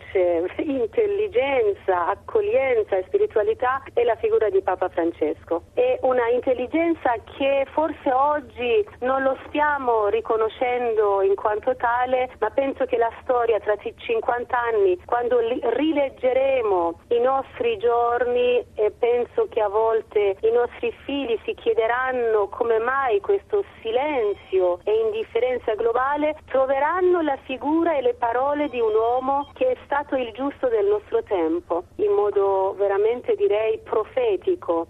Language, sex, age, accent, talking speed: Italian, female, 30-49, native, 130 wpm